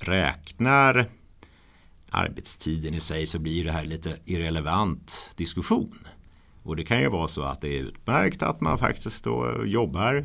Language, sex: Swedish, male